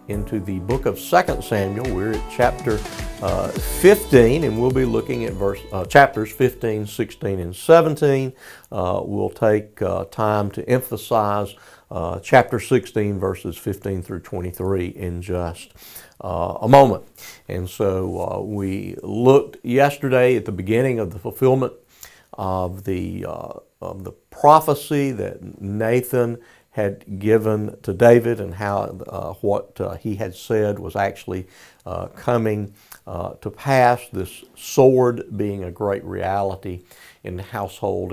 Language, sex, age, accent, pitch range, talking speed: English, male, 50-69, American, 95-120 Hz, 140 wpm